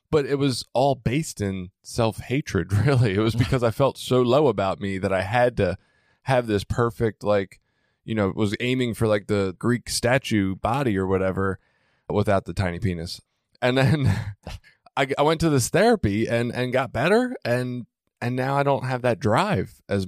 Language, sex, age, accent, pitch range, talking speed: English, male, 20-39, American, 100-135 Hz, 185 wpm